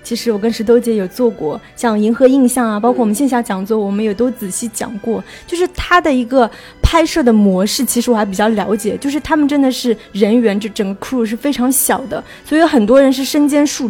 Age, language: 20-39, Chinese